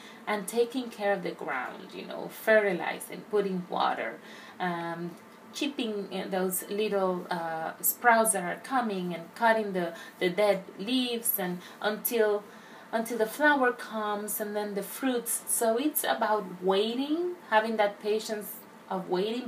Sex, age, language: female, 30-49, English